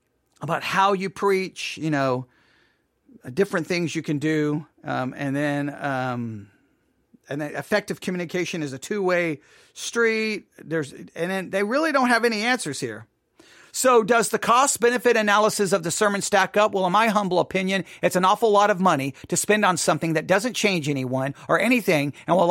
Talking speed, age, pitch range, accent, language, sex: 175 wpm, 40-59, 165-240 Hz, American, English, male